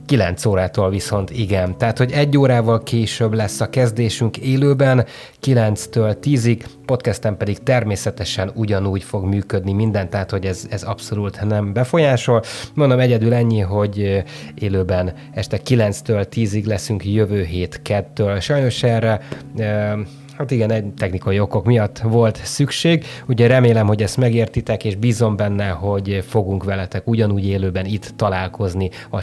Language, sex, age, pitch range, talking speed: Hungarian, male, 20-39, 100-130 Hz, 140 wpm